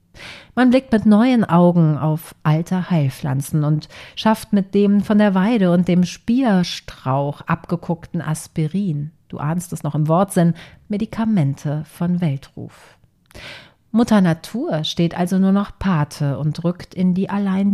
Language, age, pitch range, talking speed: German, 40-59, 155-190 Hz, 140 wpm